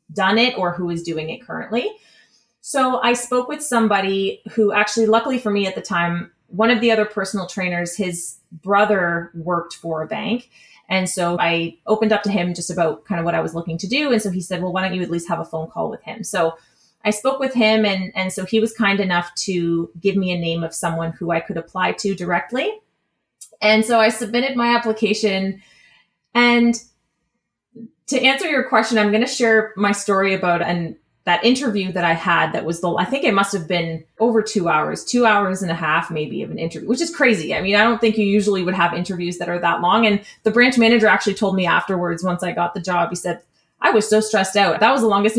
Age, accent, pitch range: 30-49, American, 175-225 Hz